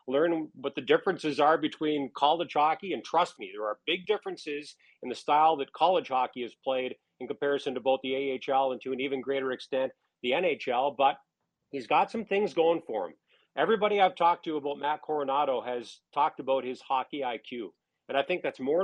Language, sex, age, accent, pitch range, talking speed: English, male, 40-59, American, 135-170 Hz, 200 wpm